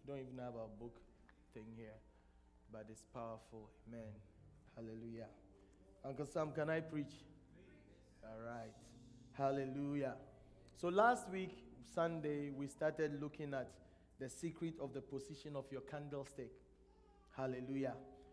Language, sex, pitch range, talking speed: English, male, 125-170 Hz, 120 wpm